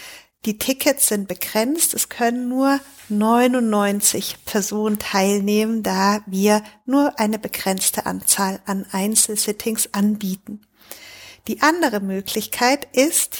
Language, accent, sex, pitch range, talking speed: German, German, female, 210-265 Hz, 105 wpm